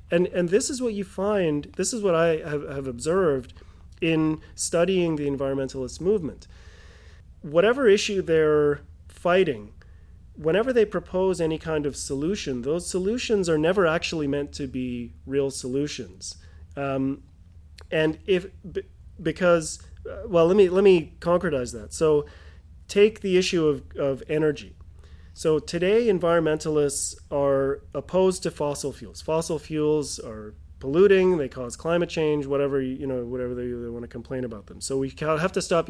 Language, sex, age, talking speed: English, male, 30-49, 150 wpm